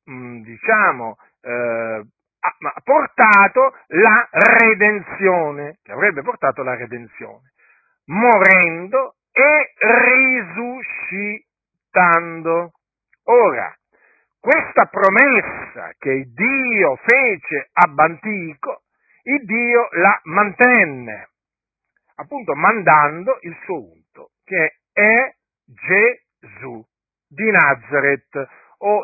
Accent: native